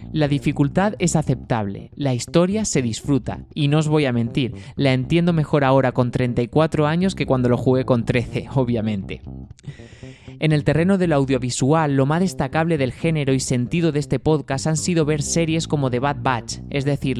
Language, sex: Spanish, male